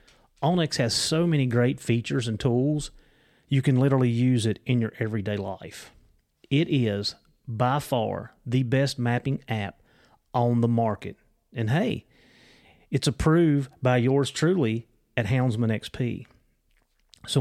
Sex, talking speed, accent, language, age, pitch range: male, 135 wpm, American, English, 30-49, 115-145 Hz